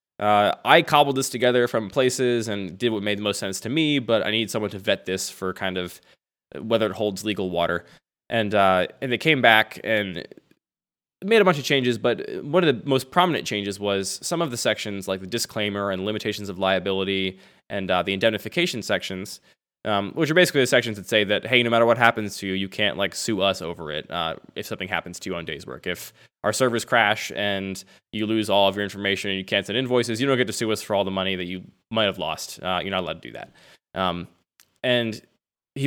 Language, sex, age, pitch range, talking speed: English, male, 20-39, 95-125 Hz, 235 wpm